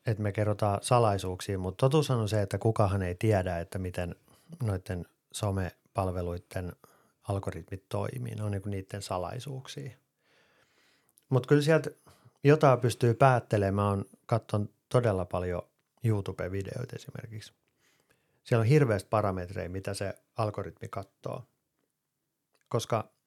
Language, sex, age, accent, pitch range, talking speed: Finnish, male, 30-49, native, 95-125 Hz, 110 wpm